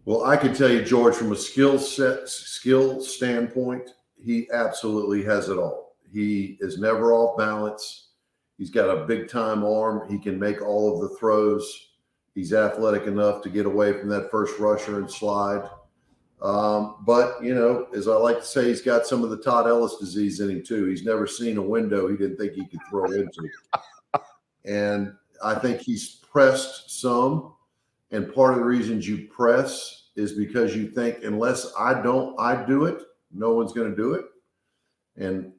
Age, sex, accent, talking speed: 50-69, male, American, 180 wpm